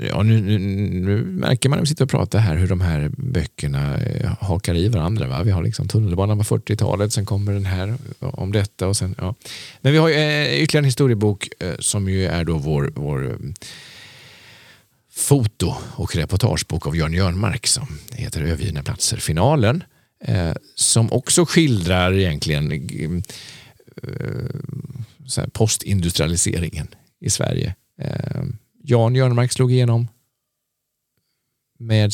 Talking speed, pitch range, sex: 145 wpm, 95-130 Hz, male